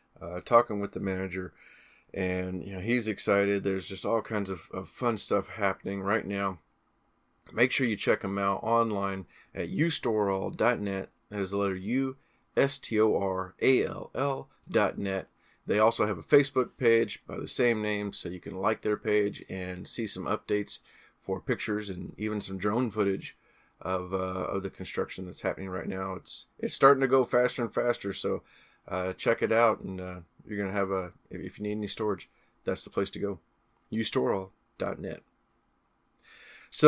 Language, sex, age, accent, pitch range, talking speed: English, male, 30-49, American, 95-120 Hz, 185 wpm